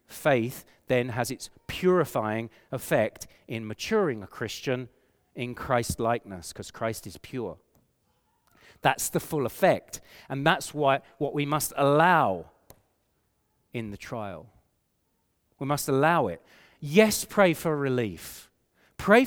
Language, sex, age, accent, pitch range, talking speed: English, male, 40-59, British, 125-195 Hz, 125 wpm